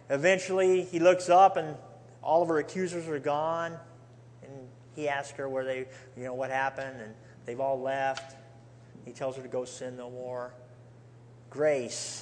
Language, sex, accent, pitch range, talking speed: English, male, American, 120-180 Hz, 165 wpm